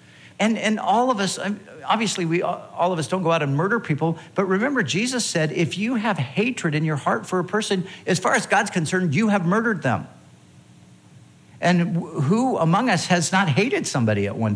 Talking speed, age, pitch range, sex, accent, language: 200 wpm, 50-69, 130-180 Hz, male, American, English